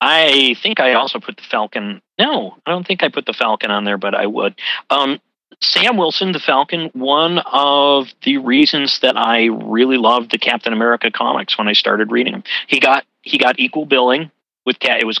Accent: American